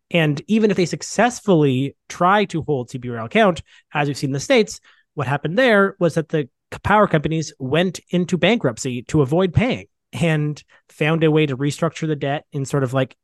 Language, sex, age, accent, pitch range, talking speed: English, male, 30-49, American, 135-170 Hz, 190 wpm